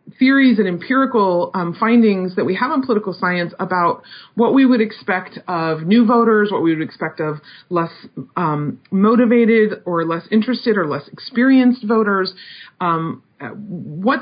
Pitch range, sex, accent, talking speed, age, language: 180-230 Hz, female, American, 150 wpm, 40-59, English